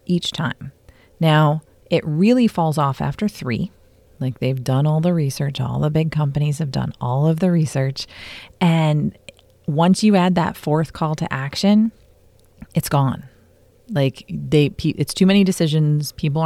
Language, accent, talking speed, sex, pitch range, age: English, American, 155 wpm, female, 140-180 Hz, 30-49